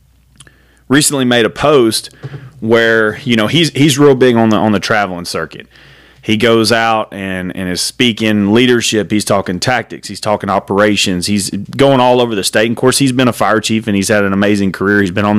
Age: 30-49